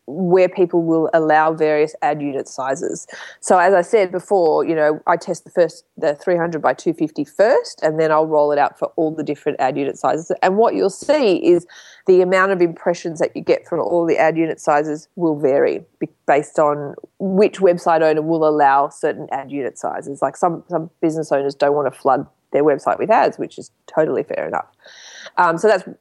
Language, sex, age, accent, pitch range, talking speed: English, female, 20-39, Australian, 155-180 Hz, 205 wpm